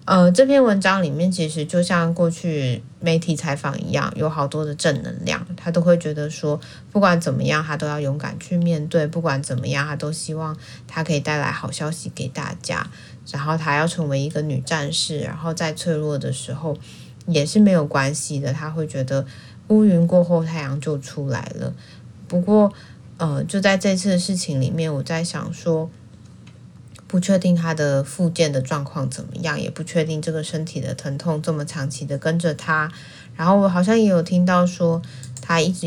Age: 20-39